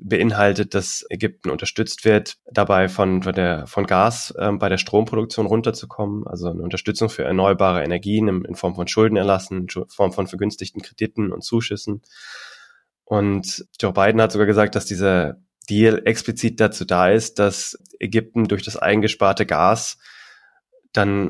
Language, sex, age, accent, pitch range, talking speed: German, male, 20-39, German, 95-110 Hz, 150 wpm